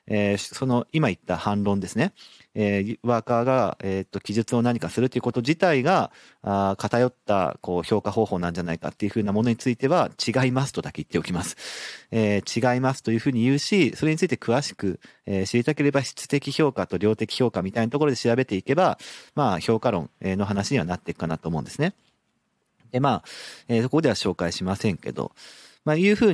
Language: Japanese